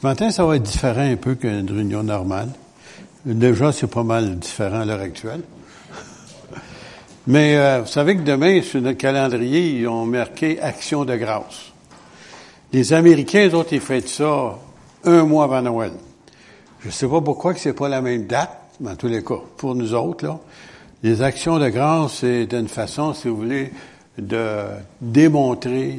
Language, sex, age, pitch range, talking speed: French, male, 70-89, 120-155 Hz, 180 wpm